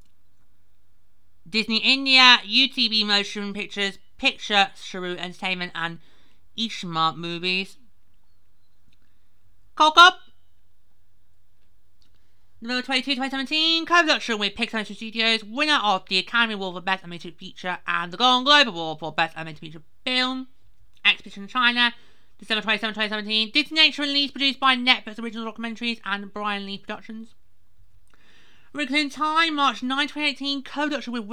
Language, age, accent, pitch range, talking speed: English, 30-49, British, 160-255 Hz, 115 wpm